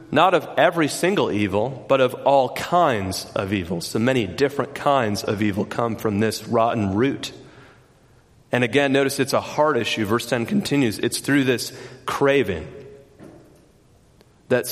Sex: male